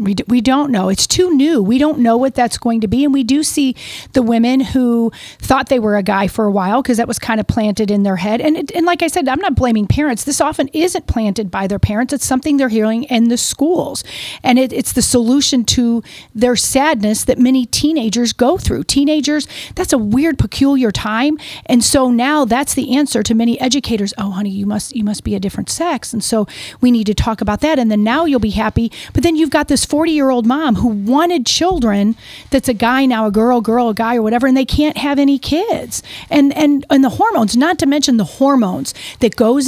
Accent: American